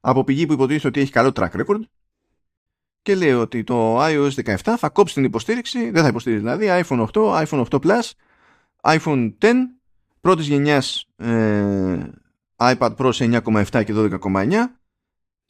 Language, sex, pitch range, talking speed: Greek, male, 115-155 Hz, 145 wpm